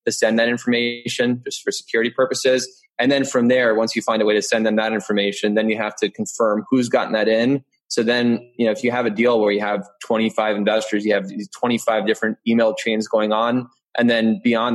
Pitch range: 105-120 Hz